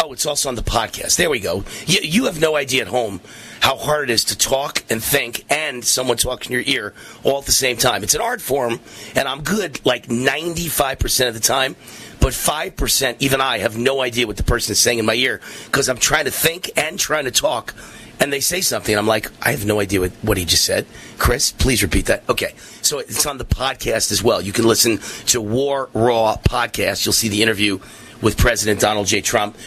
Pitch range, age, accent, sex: 105-125 Hz, 40-59, American, male